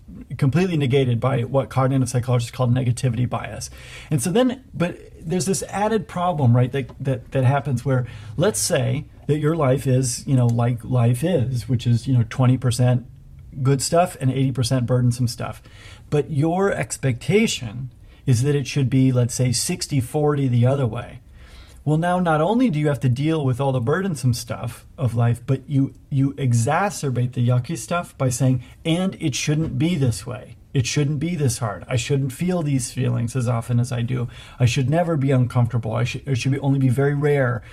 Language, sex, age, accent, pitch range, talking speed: English, male, 40-59, American, 120-145 Hz, 190 wpm